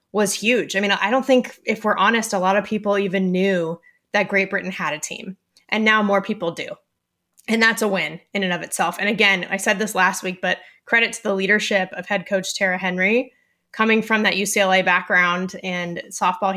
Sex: female